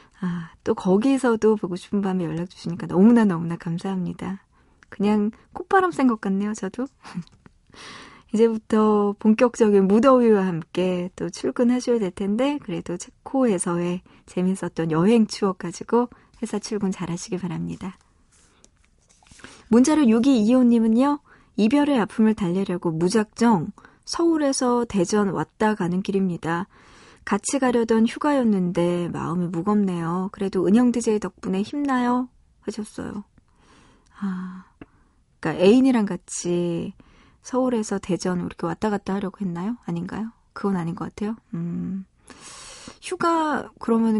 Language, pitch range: Korean, 180-230 Hz